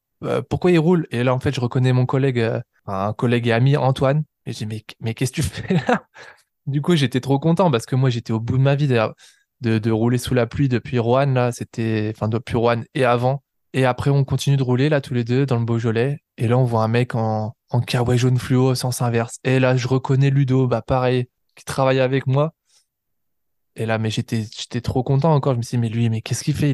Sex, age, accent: male, 20-39, French